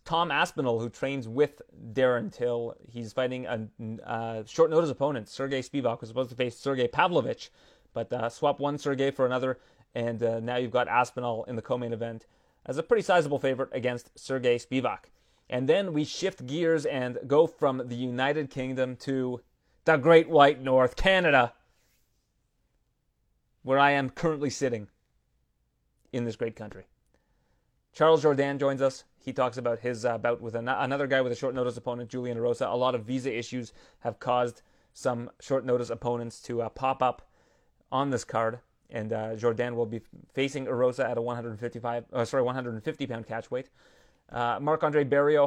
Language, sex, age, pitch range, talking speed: English, male, 30-49, 120-135 Hz, 165 wpm